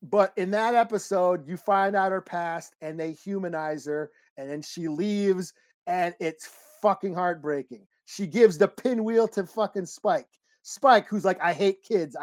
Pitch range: 185-240 Hz